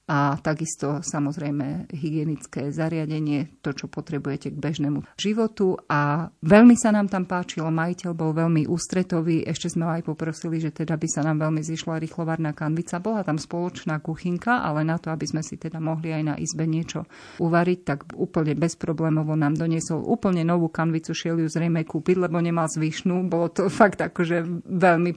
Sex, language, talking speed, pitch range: female, Slovak, 170 wpm, 155-175 Hz